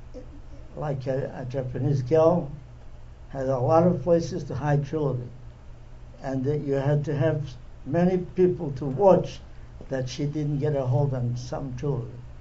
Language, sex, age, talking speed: English, male, 60-79, 155 wpm